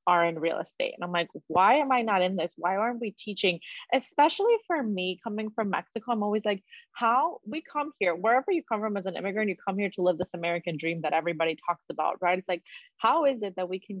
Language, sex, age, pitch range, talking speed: English, female, 20-39, 180-225 Hz, 250 wpm